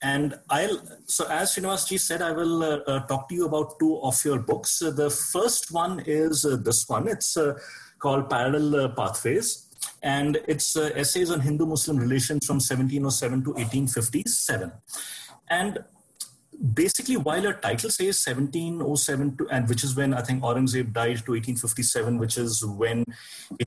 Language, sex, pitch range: English, male, 125-155 Hz